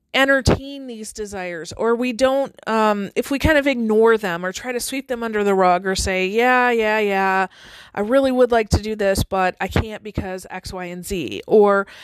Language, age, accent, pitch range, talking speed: English, 40-59, American, 190-250 Hz, 210 wpm